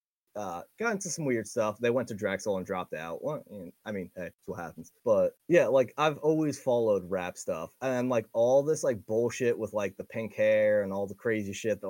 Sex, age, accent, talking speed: male, 20-39, American, 235 wpm